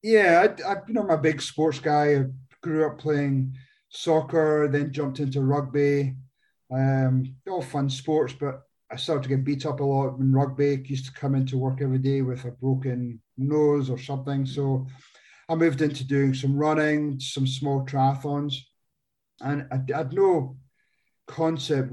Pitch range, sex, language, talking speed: 130-145 Hz, male, English, 175 wpm